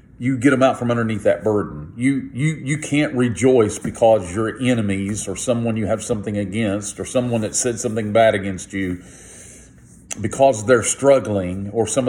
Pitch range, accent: 100-130 Hz, American